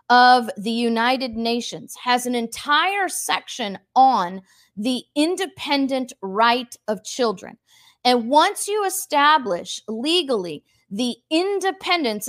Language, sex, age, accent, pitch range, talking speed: English, female, 40-59, American, 240-315 Hz, 105 wpm